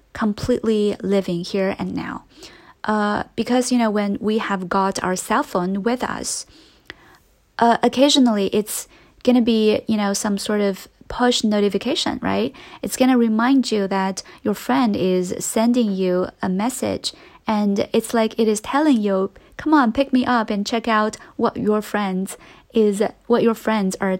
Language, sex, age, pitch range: Chinese, female, 20-39, 200-240 Hz